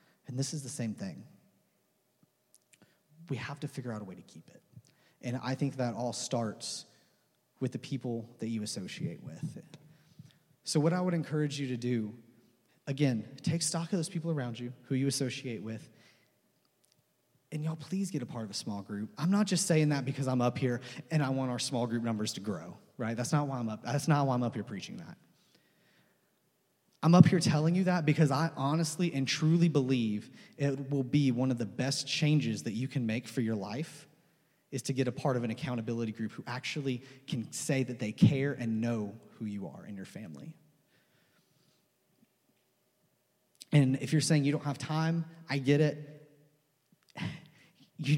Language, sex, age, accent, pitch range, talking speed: English, male, 30-49, American, 120-155 Hz, 190 wpm